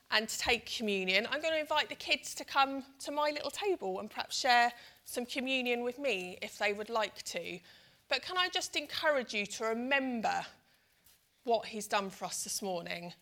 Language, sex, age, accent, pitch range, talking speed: English, female, 30-49, British, 210-270 Hz, 195 wpm